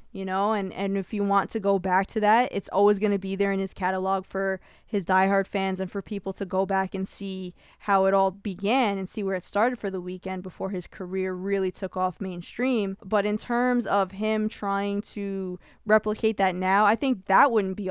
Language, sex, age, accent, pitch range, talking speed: English, female, 20-39, American, 190-220 Hz, 225 wpm